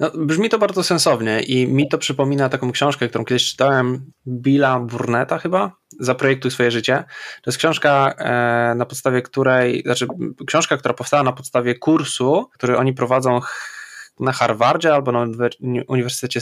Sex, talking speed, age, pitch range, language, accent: male, 155 wpm, 20-39, 120-135 Hz, Polish, native